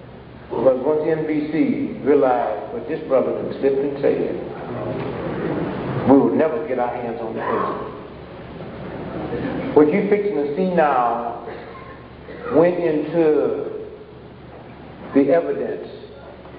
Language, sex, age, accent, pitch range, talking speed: English, male, 60-79, American, 125-160 Hz, 110 wpm